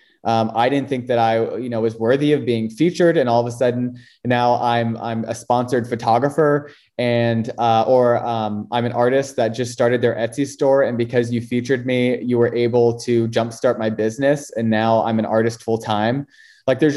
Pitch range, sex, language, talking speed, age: 115-125 Hz, male, English, 205 wpm, 20-39